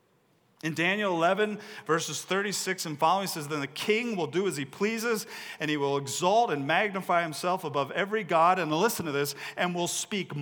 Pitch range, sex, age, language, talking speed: 155-215 Hz, male, 40-59, English, 195 wpm